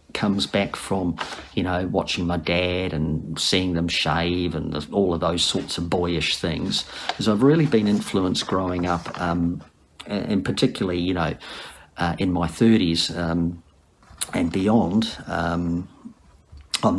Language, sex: English, male